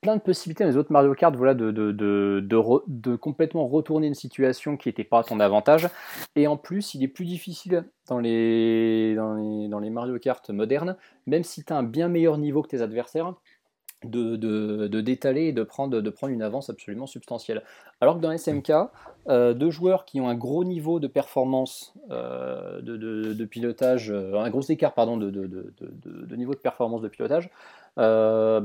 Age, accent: 20-39, French